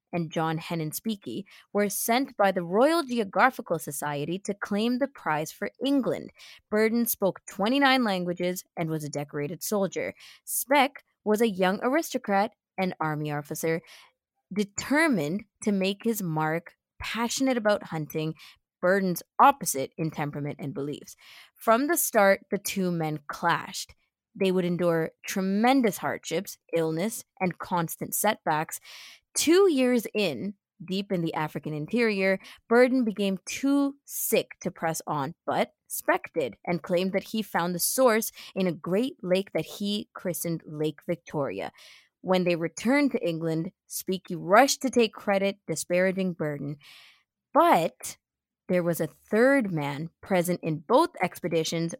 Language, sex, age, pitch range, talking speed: English, female, 20-39, 165-225 Hz, 135 wpm